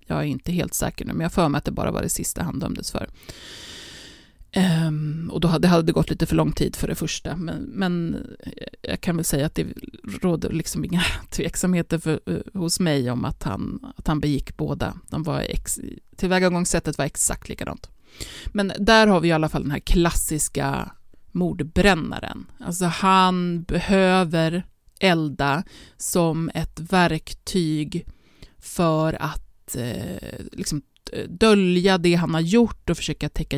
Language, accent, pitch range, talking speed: Swedish, native, 155-190 Hz, 160 wpm